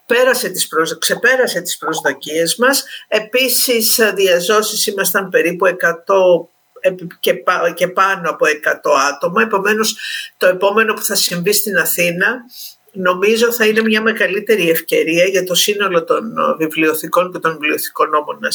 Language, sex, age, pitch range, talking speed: Greek, female, 50-69, 175-235 Hz, 130 wpm